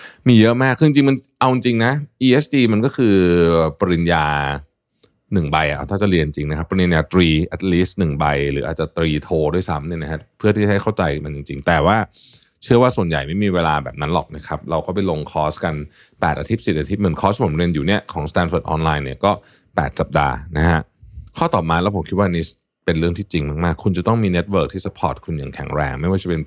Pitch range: 80-105 Hz